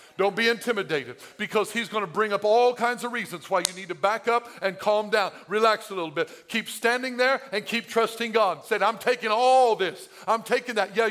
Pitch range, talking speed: 165-245 Hz, 225 wpm